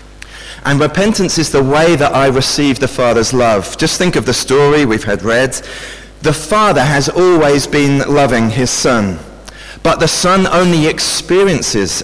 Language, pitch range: English, 110-145 Hz